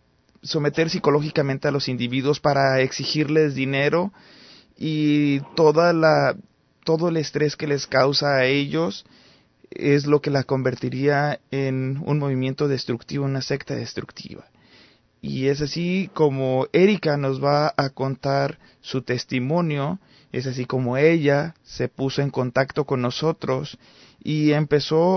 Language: Spanish